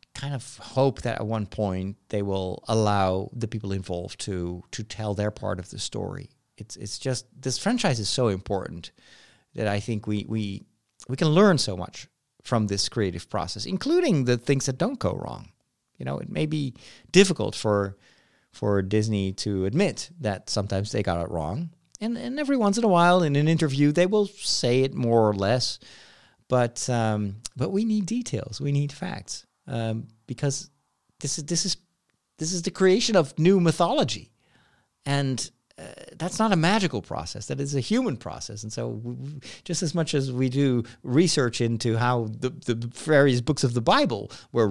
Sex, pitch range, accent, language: male, 105-160 Hz, American, English